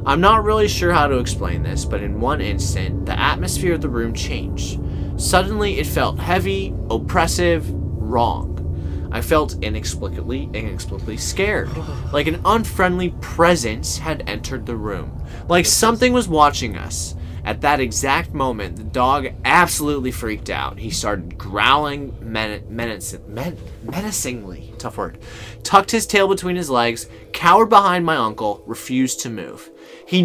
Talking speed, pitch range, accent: 145 wpm, 100-145 Hz, American